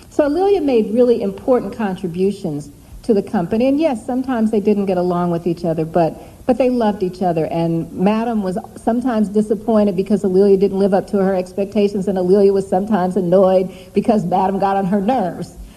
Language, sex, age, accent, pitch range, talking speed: English, female, 50-69, American, 175-215 Hz, 185 wpm